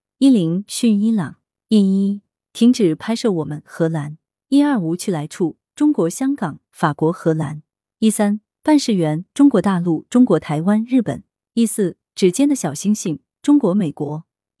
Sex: female